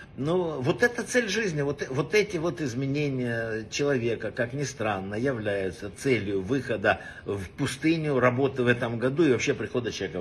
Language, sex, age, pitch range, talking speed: Russian, male, 60-79, 115-150 Hz, 160 wpm